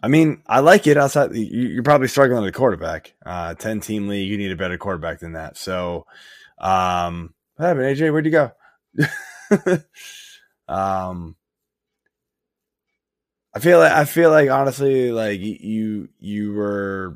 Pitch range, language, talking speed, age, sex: 90-115 Hz, English, 150 wpm, 20-39, male